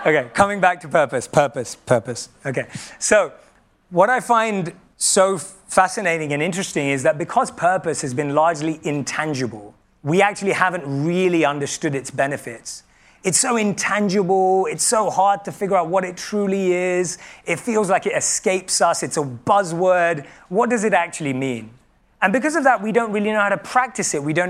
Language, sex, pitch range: English, male, 155-205 Hz